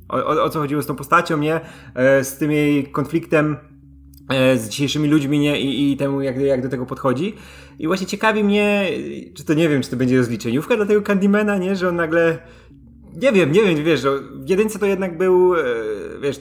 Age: 20-39